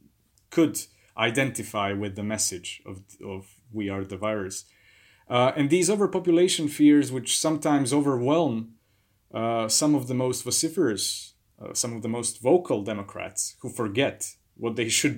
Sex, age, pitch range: male, 30-49, 105-135 Hz